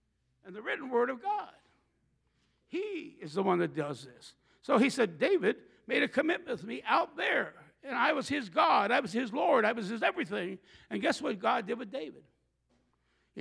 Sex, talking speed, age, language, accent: male, 200 wpm, 60-79, English, American